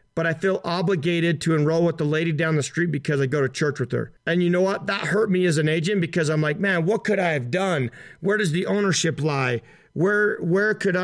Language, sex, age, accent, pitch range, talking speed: English, male, 40-59, American, 150-180 Hz, 250 wpm